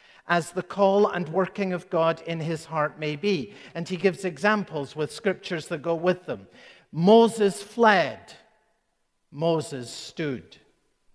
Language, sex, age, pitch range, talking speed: English, male, 60-79, 150-195 Hz, 140 wpm